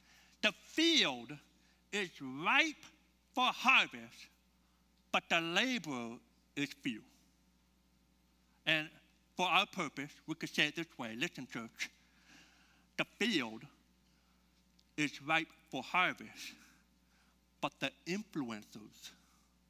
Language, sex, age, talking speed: English, male, 60-79, 95 wpm